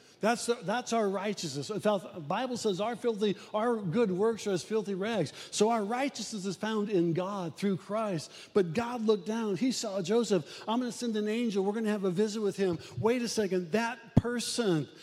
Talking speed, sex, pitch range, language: 210 wpm, male, 165-215 Hz, English